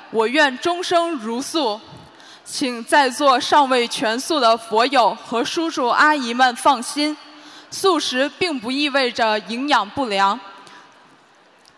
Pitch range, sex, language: 235-310 Hz, female, Chinese